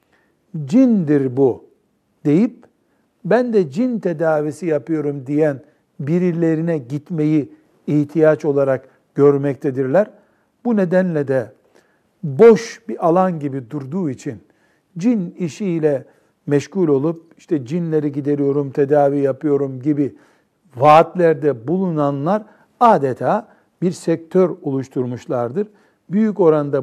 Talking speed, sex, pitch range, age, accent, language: 90 wpm, male, 145-180 Hz, 60-79, native, Turkish